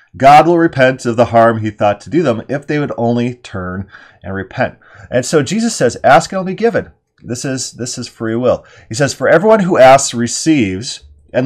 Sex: male